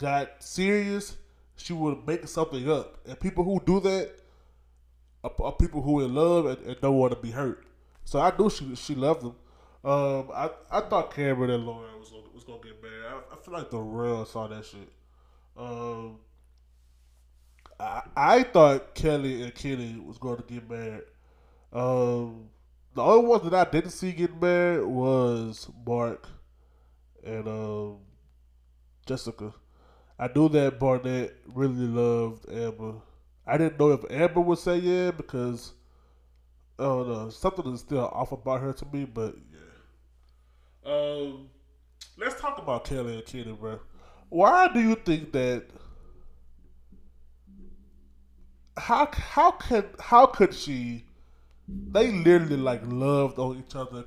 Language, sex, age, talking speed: English, male, 20-39, 150 wpm